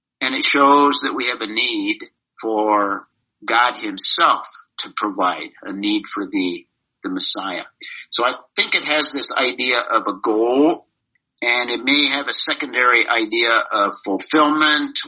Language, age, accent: English, 50-69, American